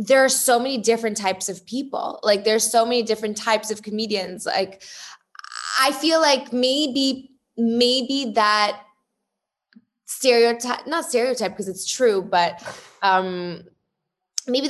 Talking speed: 130 wpm